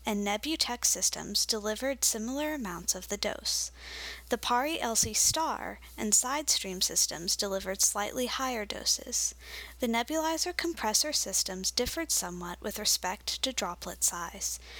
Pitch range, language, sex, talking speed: 190-255 Hz, English, female, 115 wpm